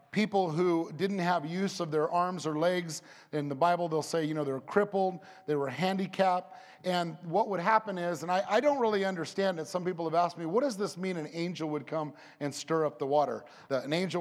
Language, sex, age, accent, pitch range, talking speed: English, male, 30-49, American, 155-195 Hz, 235 wpm